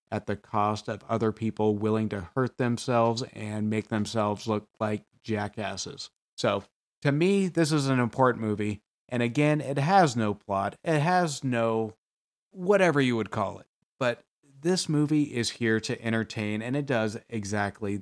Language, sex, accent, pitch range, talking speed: English, male, American, 110-150 Hz, 165 wpm